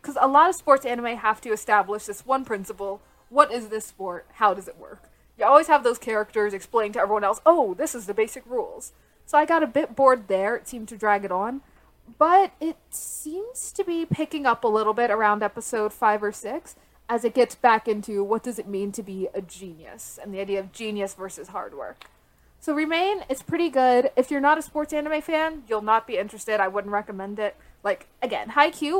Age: 20-39